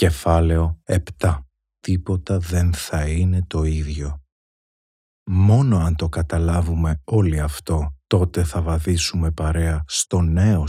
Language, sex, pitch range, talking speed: Greek, male, 80-95 Hz, 110 wpm